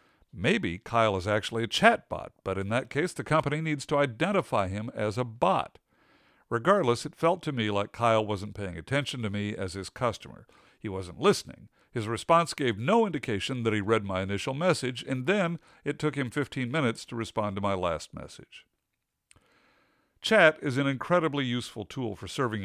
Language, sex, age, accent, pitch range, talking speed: English, male, 50-69, American, 105-145 Hz, 185 wpm